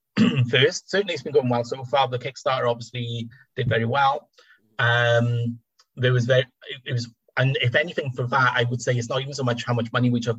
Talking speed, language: 225 wpm, English